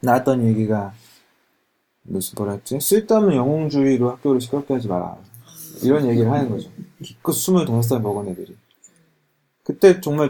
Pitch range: 120-170 Hz